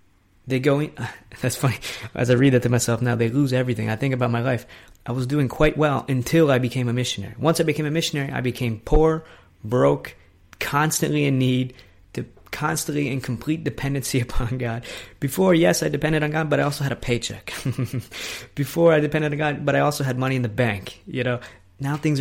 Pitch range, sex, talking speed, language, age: 110-140 Hz, male, 215 wpm, English, 20-39